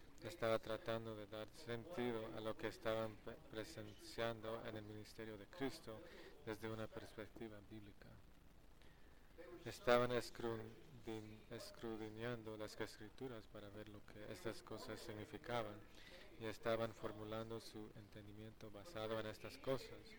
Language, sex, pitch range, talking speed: English, male, 105-115 Hz, 125 wpm